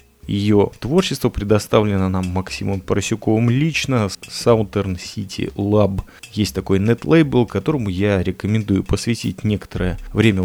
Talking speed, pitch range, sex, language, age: 110 wpm, 95-125 Hz, male, Russian, 30-49